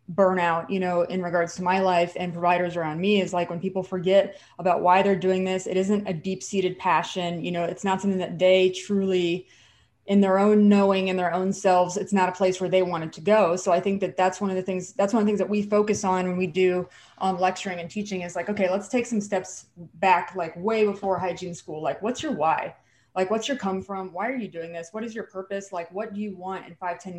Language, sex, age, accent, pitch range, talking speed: English, female, 20-39, American, 175-195 Hz, 260 wpm